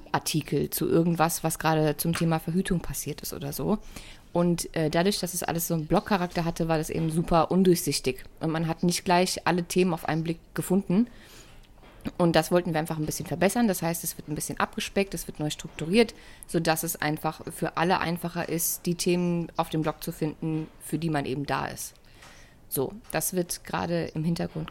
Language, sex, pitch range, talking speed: German, female, 155-185 Hz, 200 wpm